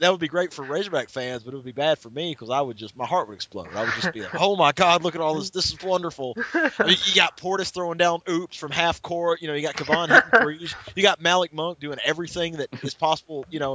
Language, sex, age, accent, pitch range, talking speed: English, male, 30-49, American, 125-170 Hz, 290 wpm